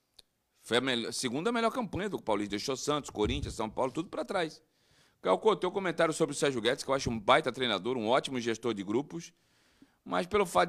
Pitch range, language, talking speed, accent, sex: 110-145 Hz, Portuguese, 210 wpm, Brazilian, male